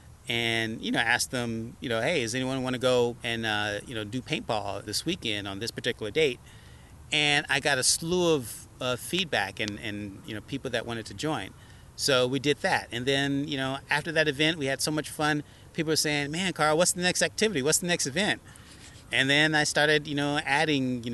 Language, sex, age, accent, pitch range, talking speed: English, male, 30-49, American, 110-140 Hz, 225 wpm